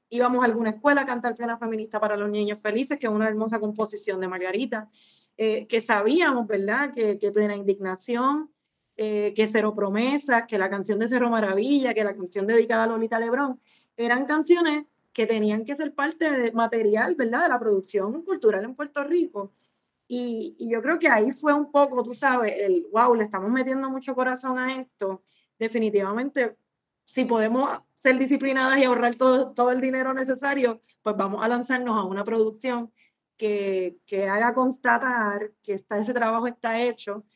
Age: 20-39